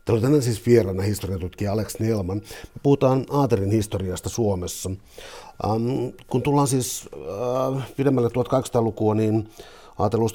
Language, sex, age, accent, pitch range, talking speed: Finnish, male, 50-69, native, 105-120 Hz, 120 wpm